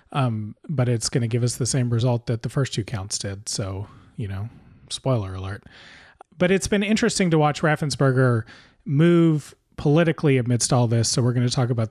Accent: American